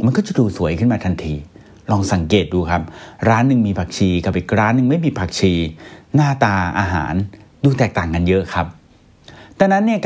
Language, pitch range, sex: Thai, 95-130 Hz, male